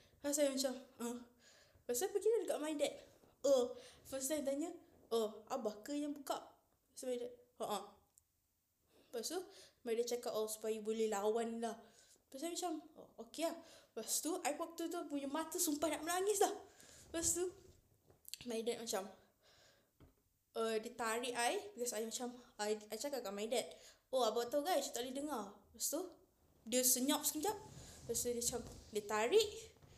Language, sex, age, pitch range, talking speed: Malay, female, 20-39, 220-285 Hz, 180 wpm